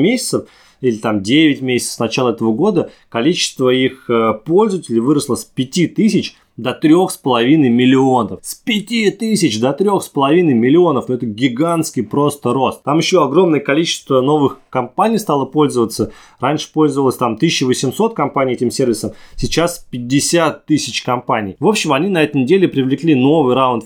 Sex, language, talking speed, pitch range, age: male, Russian, 140 wpm, 120-155 Hz, 20-39